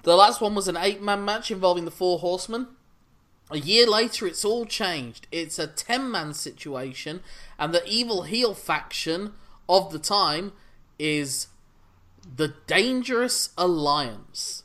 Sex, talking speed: male, 135 wpm